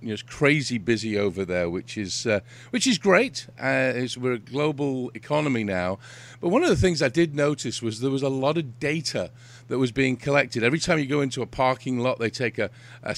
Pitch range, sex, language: 115-140 Hz, male, English